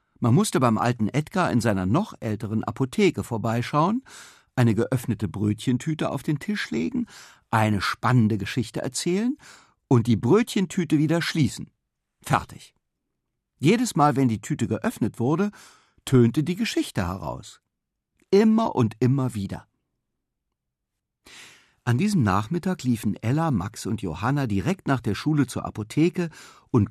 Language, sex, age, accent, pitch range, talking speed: German, male, 60-79, German, 110-155 Hz, 130 wpm